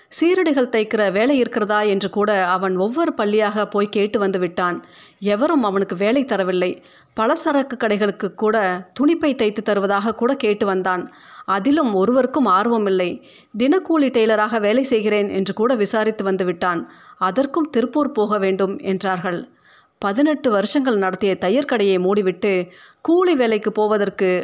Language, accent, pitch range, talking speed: Tamil, native, 190-245 Hz, 125 wpm